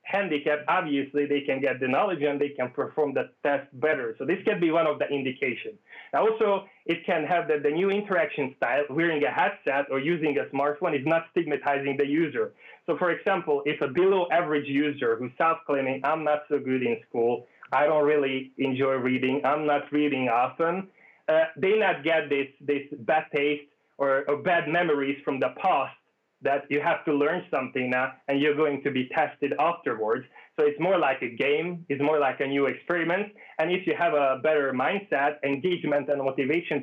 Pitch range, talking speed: 140-165 Hz, 195 wpm